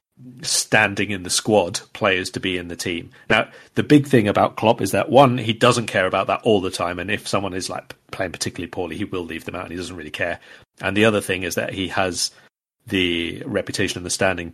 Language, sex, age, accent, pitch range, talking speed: English, male, 40-59, British, 95-110 Hz, 240 wpm